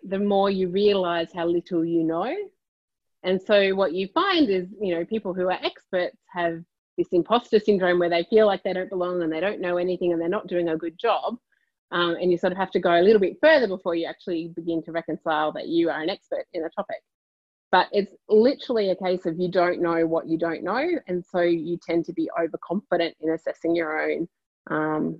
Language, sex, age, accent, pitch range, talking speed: English, female, 30-49, Australian, 170-220 Hz, 225 wpm